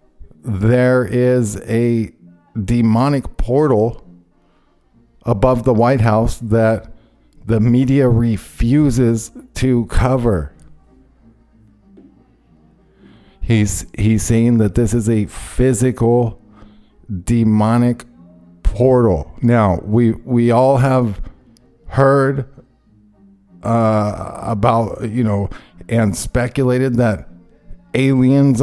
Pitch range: 105-130 Hz